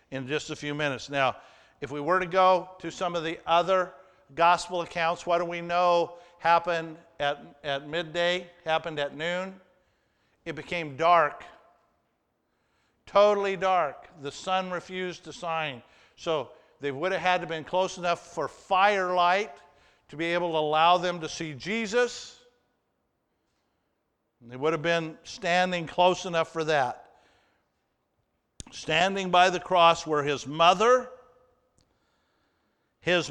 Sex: male